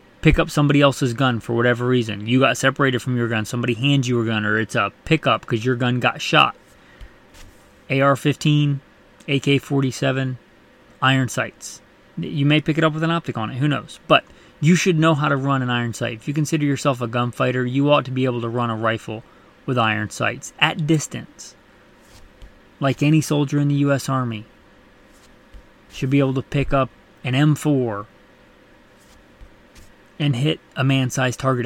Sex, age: male, 20-39